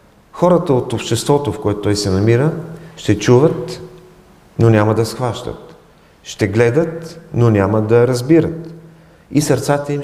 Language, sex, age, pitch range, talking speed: English, male, 40-59, 110-150 Hz, 135 wpm